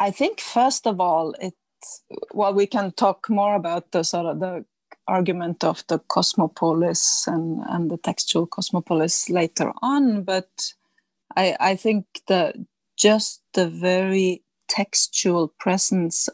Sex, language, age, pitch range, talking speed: female, English, 30-49, 170-215 Hz, 135 wpm